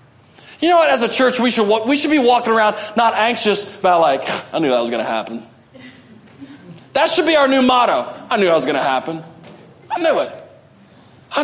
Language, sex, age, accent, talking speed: English, male, 40-59, American, 215 wpm